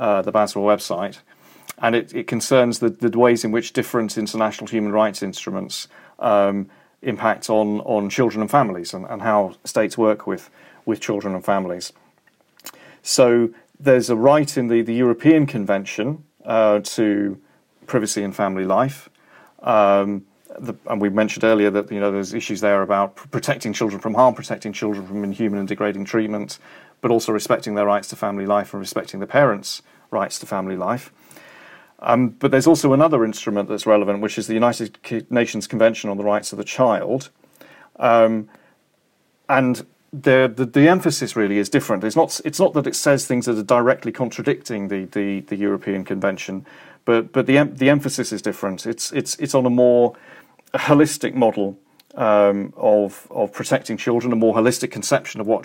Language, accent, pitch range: English, British, 100-125 Hz